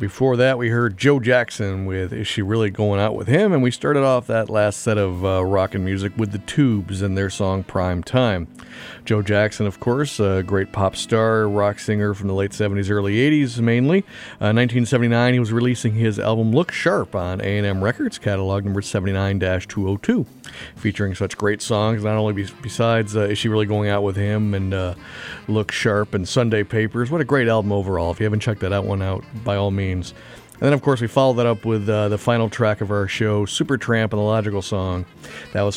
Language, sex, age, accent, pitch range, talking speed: English, male, 40-59, American, 100-115 Hz, 215 wpm